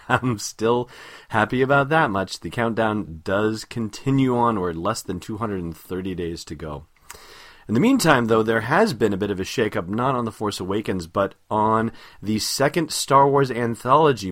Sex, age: male, 30-49